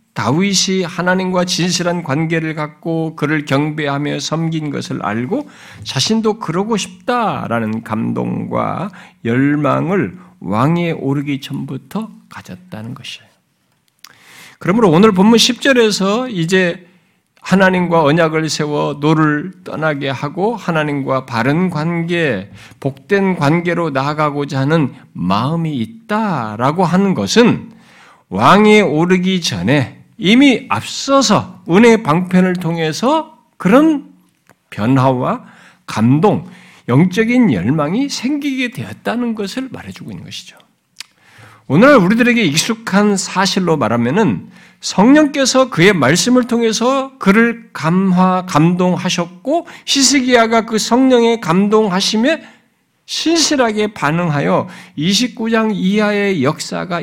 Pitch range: 150-220 Hz